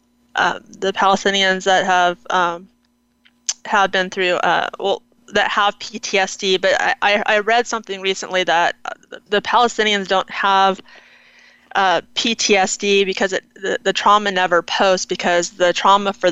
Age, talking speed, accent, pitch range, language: 20-39, 140 wpm, American, 190-235 Hz, English